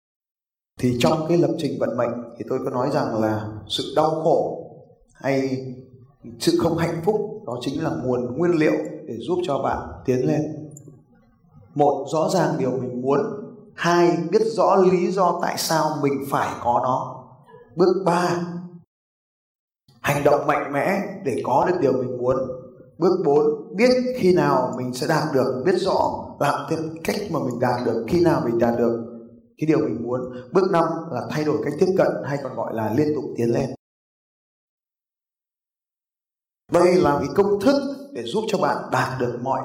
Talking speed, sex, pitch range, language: 175 wpm, male, 125-175 Hz, Vietnamese